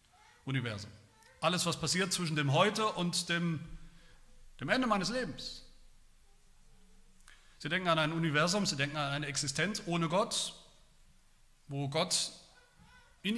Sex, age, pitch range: male, 40-59, 130-200 Hz